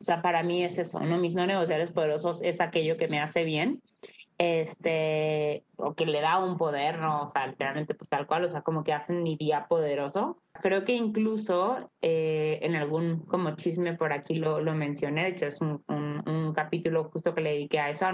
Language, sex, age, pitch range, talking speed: Spanish, female, 20-39, 155-180 Hz, 220 wpm